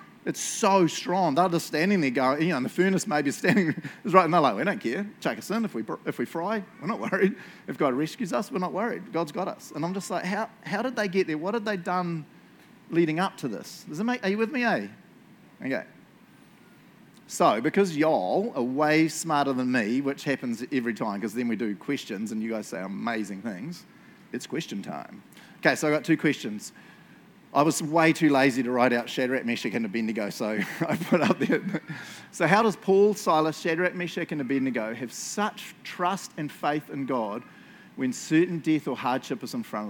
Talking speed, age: 215 wpm, 30-49